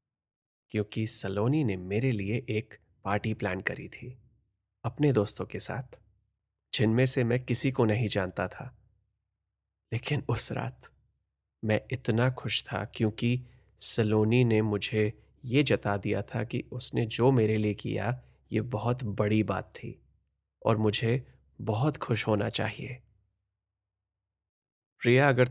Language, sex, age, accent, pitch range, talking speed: Hindi, male, 30-49, native, 105-125 Hz, 130 wpm